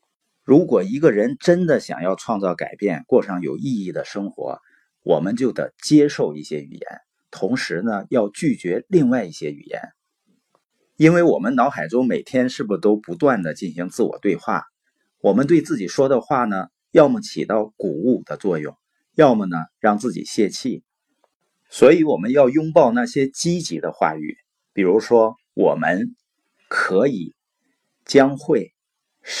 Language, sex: Chinese, male